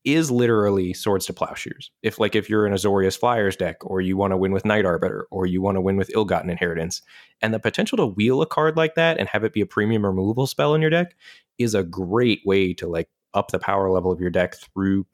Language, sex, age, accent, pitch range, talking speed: English, male, 20-39, American, 95-110 Hz, 255 wpm